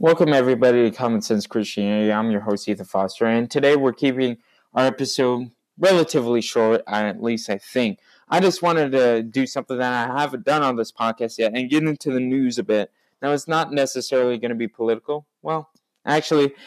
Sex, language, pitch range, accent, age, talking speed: male, English, 120-160 Hz, American, 20-39, 195 wpm